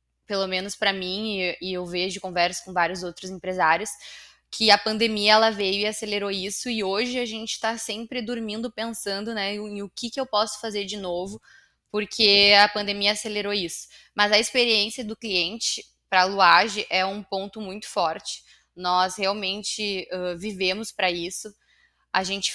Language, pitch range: Portuguese, 185-215 Hz